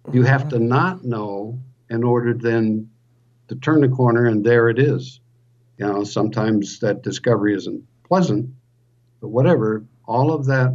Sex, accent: male, American